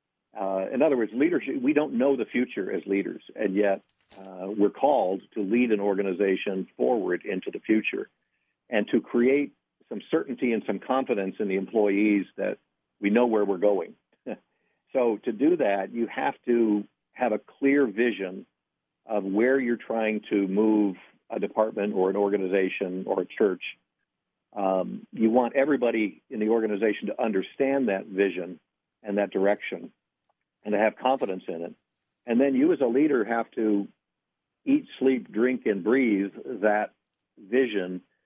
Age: 50-69